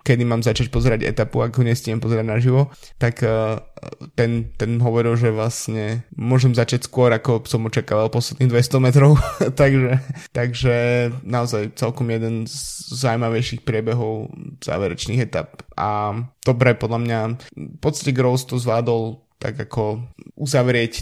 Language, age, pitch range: Slovak, 20-39, 110-125 Hz